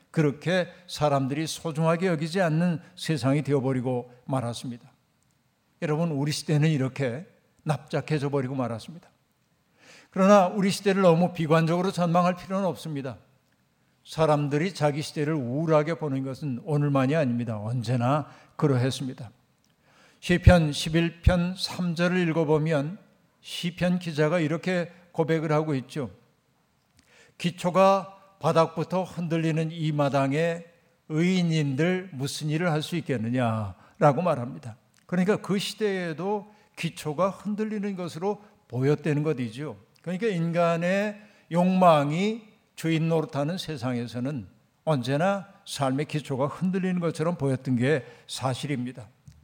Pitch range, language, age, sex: 140-175 Hz, Korean, 50-69, male